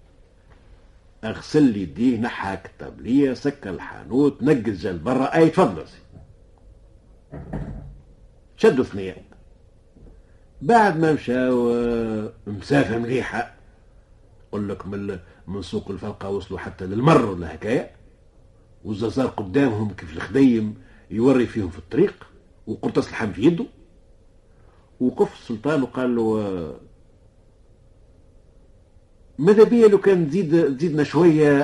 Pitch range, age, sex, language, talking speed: 90-125 Hz, 50-69, male, Arabic, 95 wpm